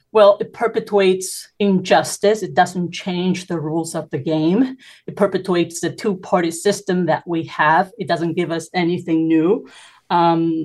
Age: 30-49